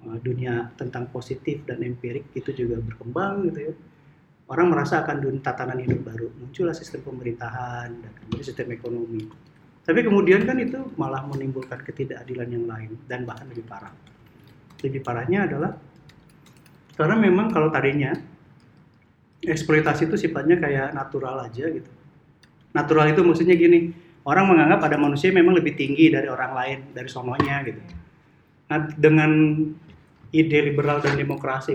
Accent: native